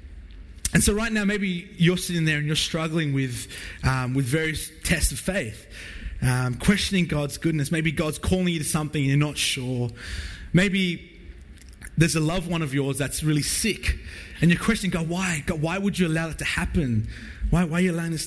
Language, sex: English, male